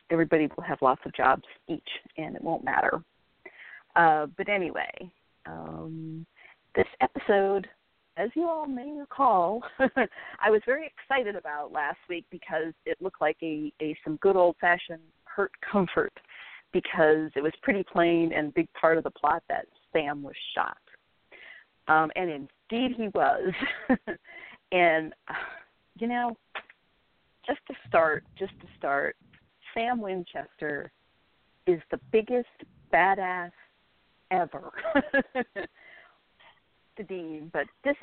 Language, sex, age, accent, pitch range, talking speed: English, female, 40-59, American, 155-230 Hz, 130 wpm